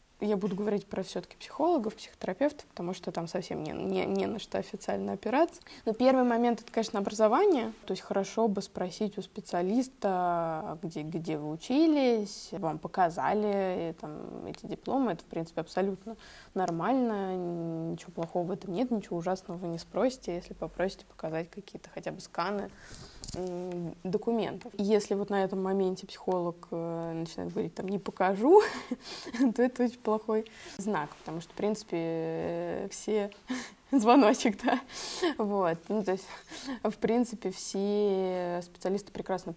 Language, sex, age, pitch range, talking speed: Russian, female, 20-39, 175-225 Hz, 145 wpm